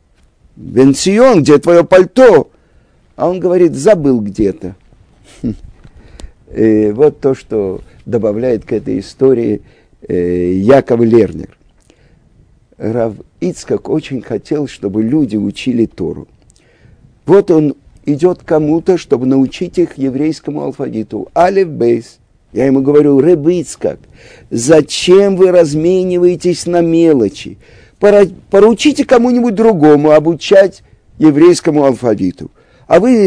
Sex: male